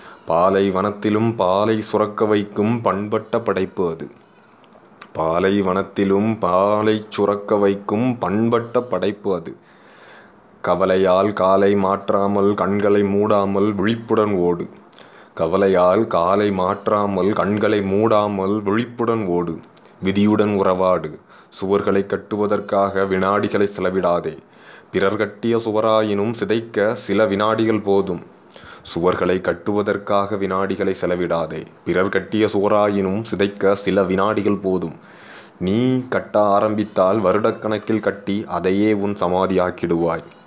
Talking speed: 90 wpm